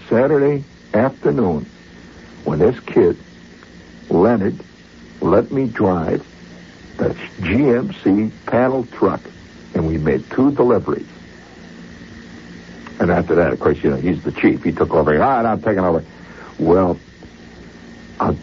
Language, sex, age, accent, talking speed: English, male, 60-79, American, 125 wpm